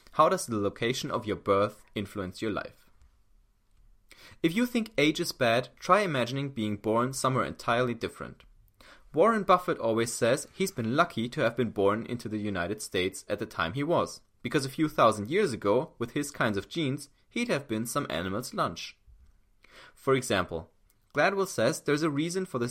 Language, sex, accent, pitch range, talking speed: English, male, German, 105-155 Hz, 180 wpm